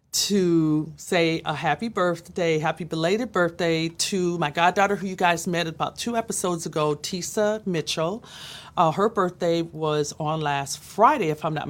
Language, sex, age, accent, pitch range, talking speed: English, female, 40-59, American, 155-195 Hz, 160 wpm